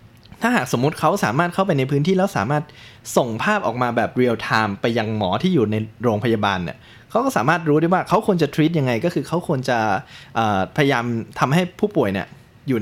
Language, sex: Thai, male